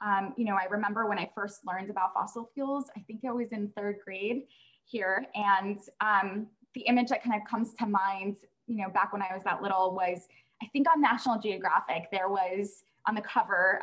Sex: female